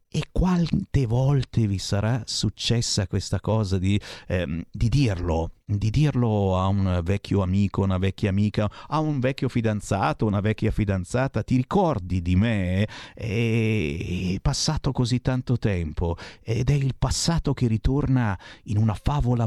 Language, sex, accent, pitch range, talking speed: Italian, male, native, 95-135 Hz, 140 wpm